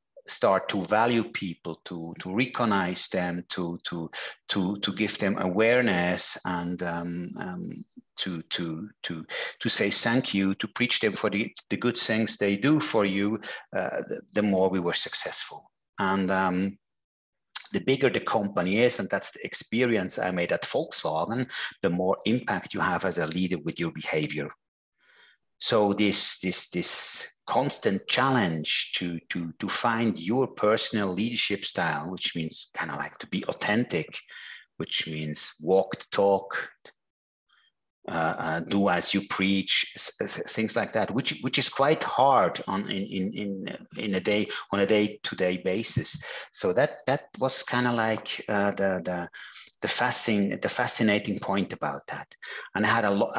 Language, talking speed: English, 165 wpm